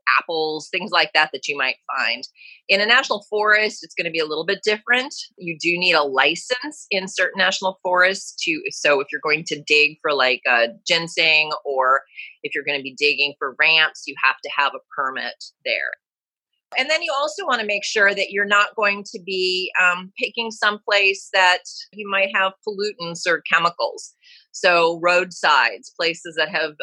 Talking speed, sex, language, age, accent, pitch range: 190 wpm, female, English, 30-49, American, 155-225 Hz